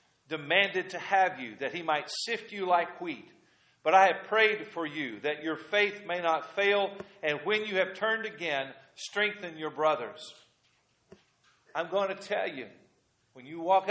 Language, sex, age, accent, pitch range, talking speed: English, male, 50-69, American, 160-205 Hz, 175 wpm